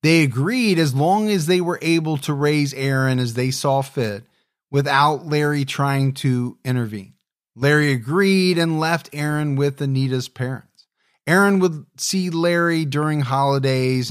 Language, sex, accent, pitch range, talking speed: English, male, American, 130-160 Hz, 145 wpm